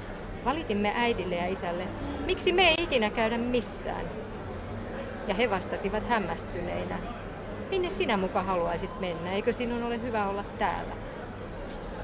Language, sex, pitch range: Finnish, female, 180-235 Hz